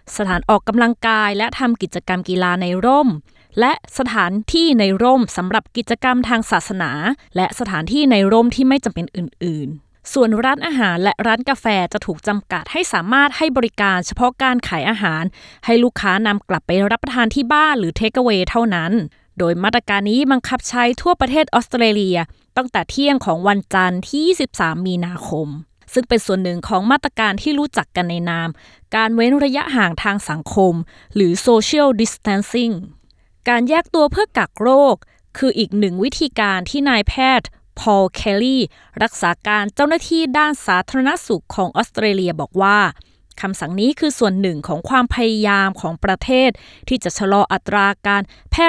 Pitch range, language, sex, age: 180-255 Hz, Thai, female, 20-39